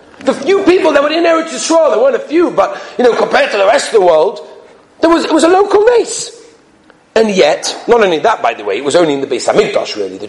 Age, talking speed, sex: 40-59, 270 wpm, male